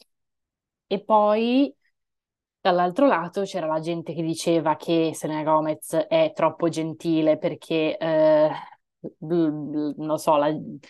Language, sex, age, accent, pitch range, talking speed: Italian, female, 20-39, native, 155-180 Hz, 125 wpm